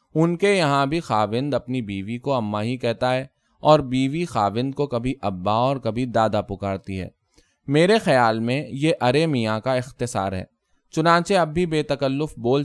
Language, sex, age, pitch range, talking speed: Urdu, male, 20-39, 110-150 Hz, 180 wpm